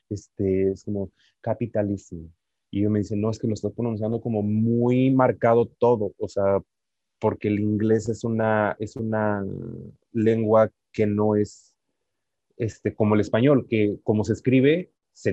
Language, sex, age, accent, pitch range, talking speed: Spanish, male, 30-49, Mexican, 100-115 Hz, 155 wpm